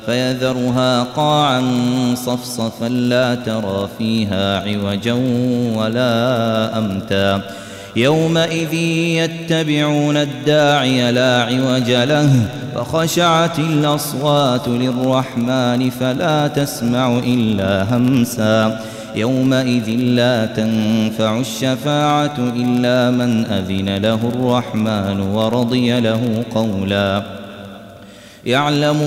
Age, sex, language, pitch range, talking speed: 30-49, male, Arabic, 115-145 Hz, 70 wpm